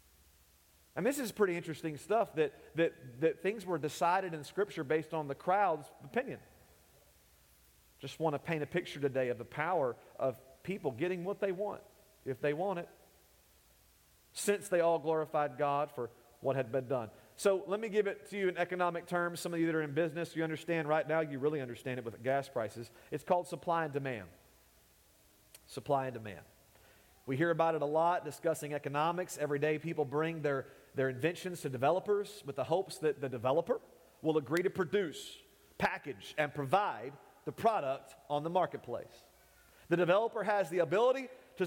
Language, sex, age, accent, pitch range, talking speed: English, male, 40-59, American, 145-200 Hz, 180 wpm